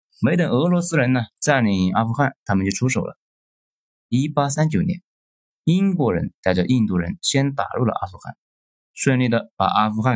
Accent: native